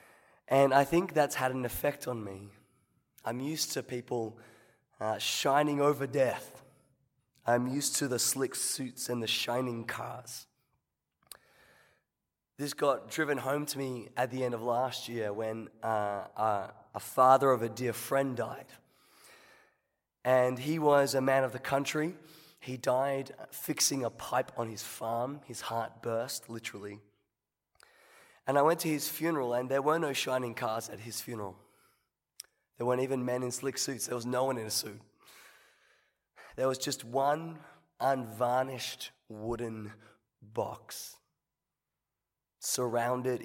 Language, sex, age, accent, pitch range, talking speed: English, male, 20-39, Australian, 115-135 Hz, 145 wpm